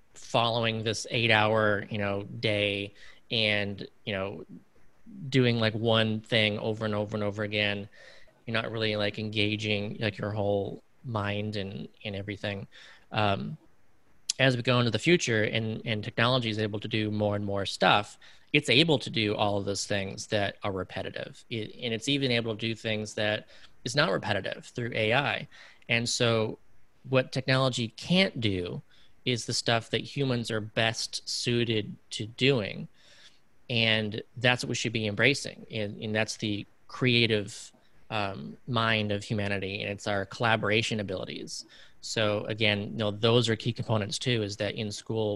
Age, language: 30-49, English